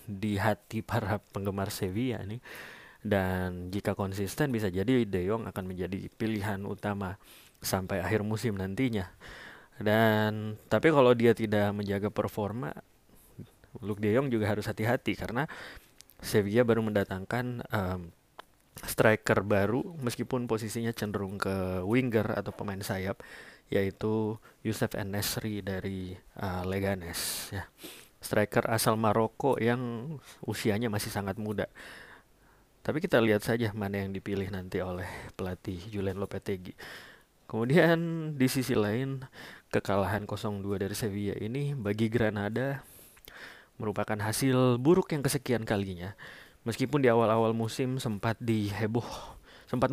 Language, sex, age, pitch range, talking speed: Indonesian, male, 20-39, 100-115 Hz, 120 wpm